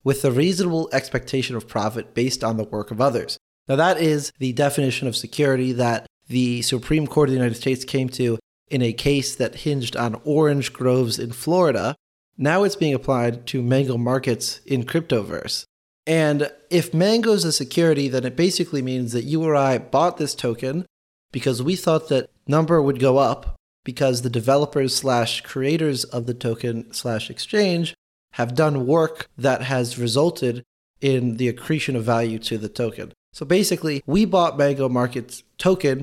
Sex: male